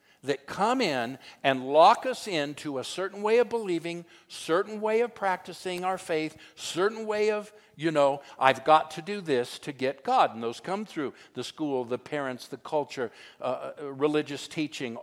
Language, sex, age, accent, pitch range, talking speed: English, male, 60-79, American, 120-165 Hz, 175 wpm